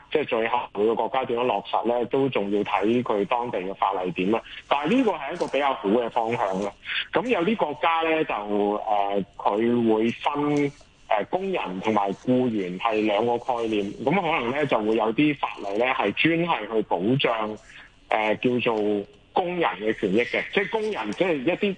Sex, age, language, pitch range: male, 20-39, Chinese, 105-145 Hz